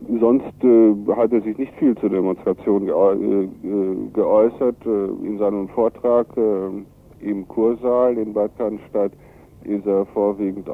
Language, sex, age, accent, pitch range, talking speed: German, male, 60-79, German, 100-115 Hz, 135 wpm